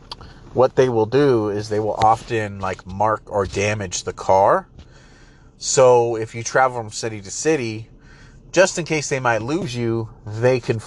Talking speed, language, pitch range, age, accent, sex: 170 wpm, English, 105-125 Hz, 30-49, American, male